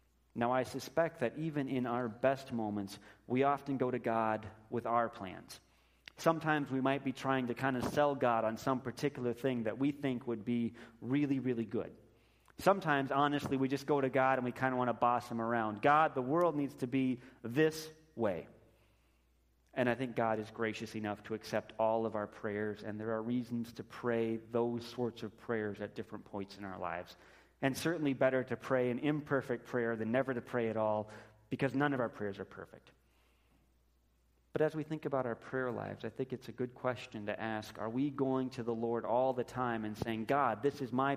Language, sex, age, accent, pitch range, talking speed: English, male, 30-49, American, 110-130 Hz, 210 wpm